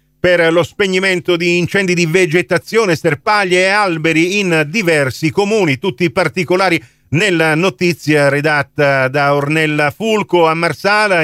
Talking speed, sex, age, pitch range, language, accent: 130 wpm, male, 50-69, 145-200 Hz, Italian, native